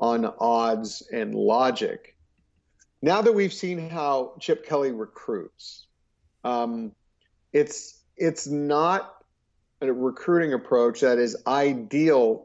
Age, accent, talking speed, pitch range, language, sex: 50-69, American, 105 wpm, 120-165 Hz, English, male